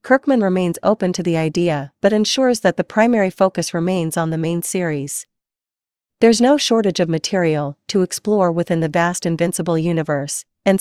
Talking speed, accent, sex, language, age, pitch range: 165 wpm, American, female, English, 40-59, 165-200 Hz